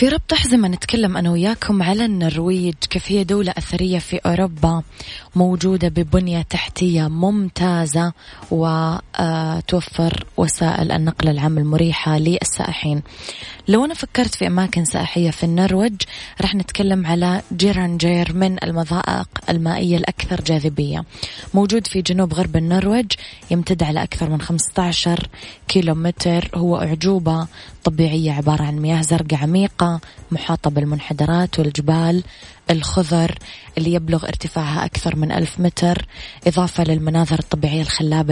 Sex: female